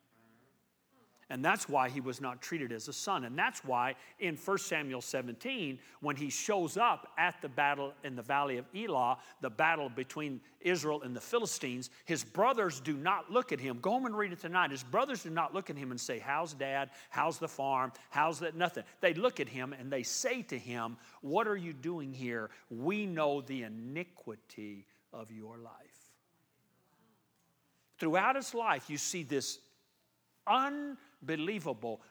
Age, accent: 50-69, American